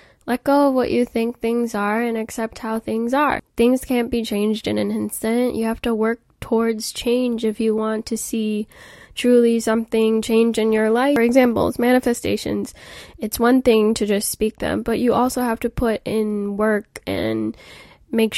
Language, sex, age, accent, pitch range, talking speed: English, female, 10-29, American, 215-250 Hz, 185 wpm